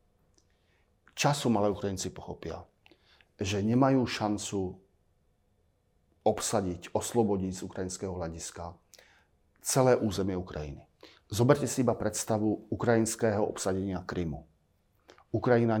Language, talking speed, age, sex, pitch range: Slovak, 85 wpm, 40-59, male, 90-115 Hz